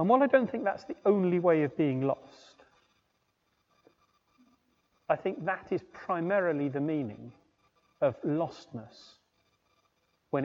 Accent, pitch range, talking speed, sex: British, 130-185 Hz, 125 wpm, male